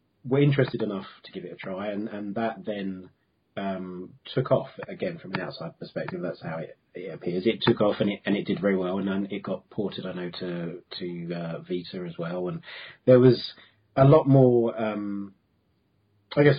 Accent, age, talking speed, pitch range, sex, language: British, 30-49, 205 wpm, 90-125 Hz, male, English